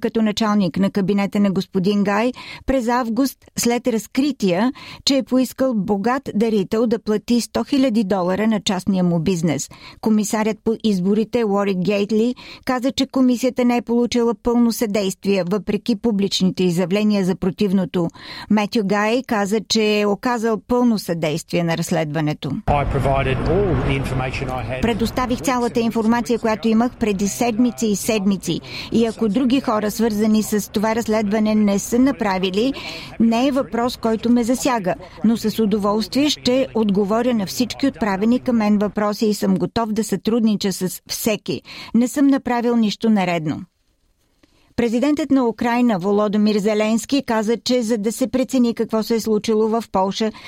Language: Bulgarian